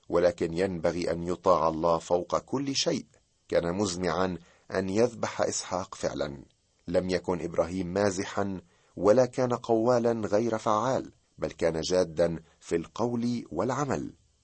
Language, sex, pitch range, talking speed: Arabic, male, 85-110 Hz, 120 wpm